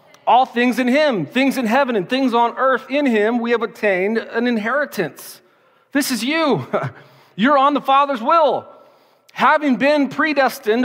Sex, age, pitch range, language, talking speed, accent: male, 40-59, 190-250 Hz, English, 160 wpm, American